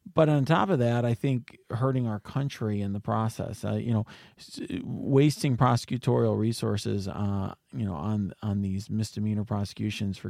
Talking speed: 155 wpm